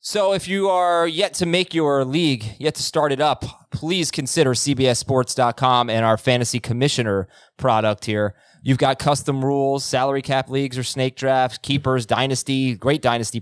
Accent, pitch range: American, 115-140 Hz